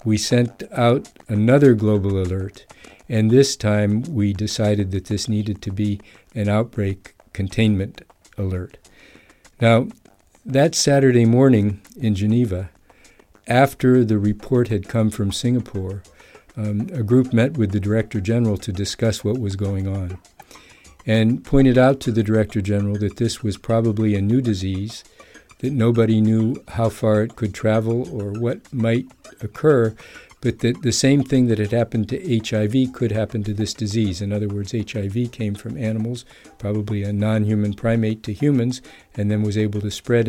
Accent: American